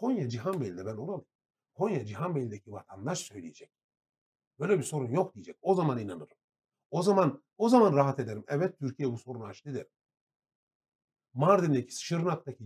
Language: Turkish